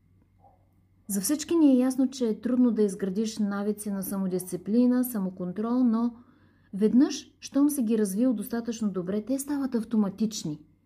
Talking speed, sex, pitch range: 140 wpm, female, 190-250 Hz